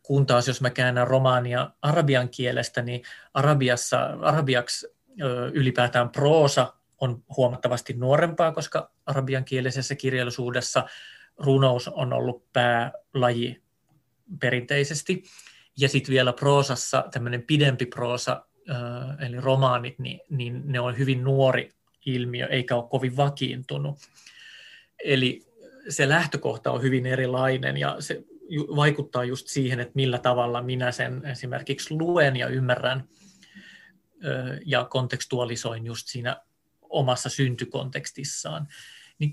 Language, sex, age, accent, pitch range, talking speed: Finnish, male, 30-49, native, 125-145 Hz, 110 wpm